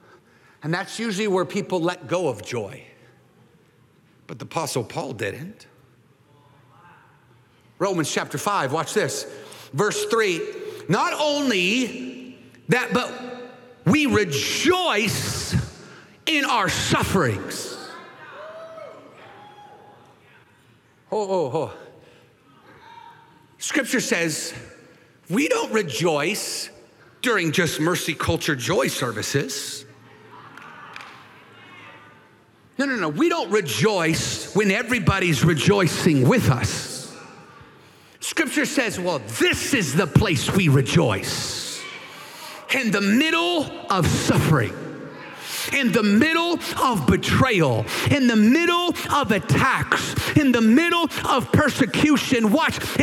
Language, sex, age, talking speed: English, male, 50-69, 95 wpm